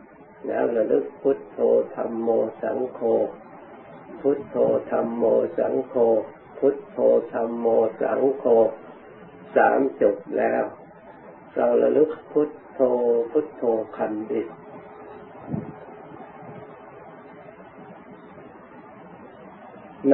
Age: 60-79